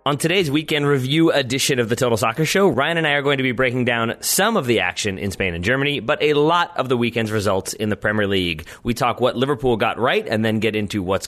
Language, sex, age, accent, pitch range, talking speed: English, male, 30-49, American, 105-145 Hz, 260 wpm